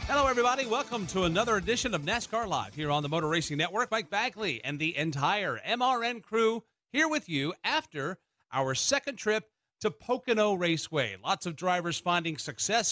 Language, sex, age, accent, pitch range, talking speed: English, male, 40-59, American, 150-225 Hz, 170 wpm